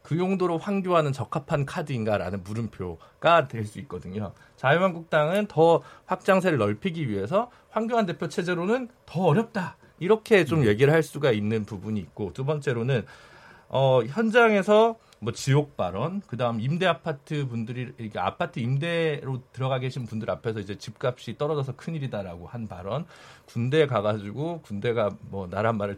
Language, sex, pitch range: Korean, male, 110-165 Hz